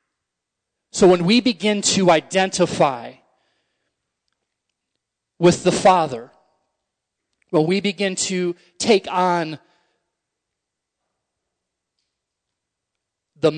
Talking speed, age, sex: 70 wpm, 30-49, male